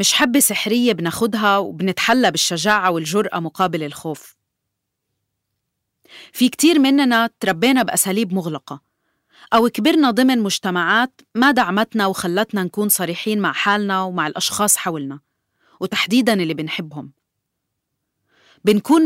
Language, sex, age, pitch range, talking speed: Arabic, female, 30-49, 175-230 Hz, 105 wpm